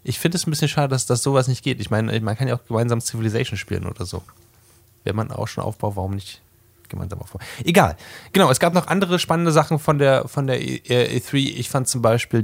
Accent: German